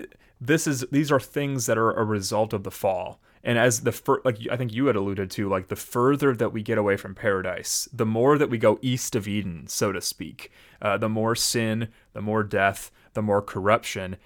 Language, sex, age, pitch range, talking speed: English, male, 30-49, 100-120 Hz, 225 wpm